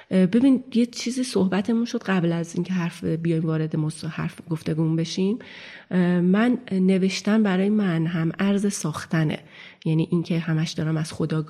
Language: Persian